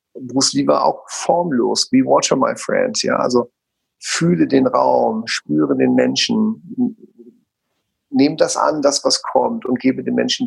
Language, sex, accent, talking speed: German, male, German, 155 wpm